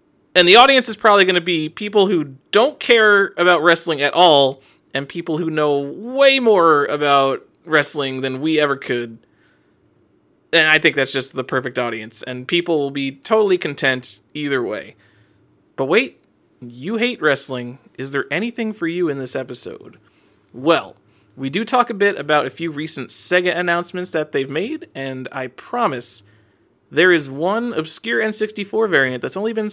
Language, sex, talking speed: English, male, 170 wpm